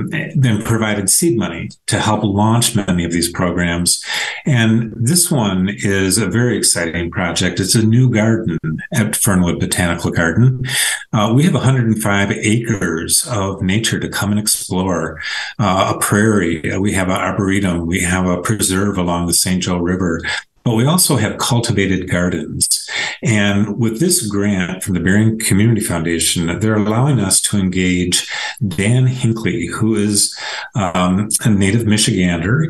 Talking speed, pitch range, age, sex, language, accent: 150 wpm, 90-115 Hz, 50-69, male, English, American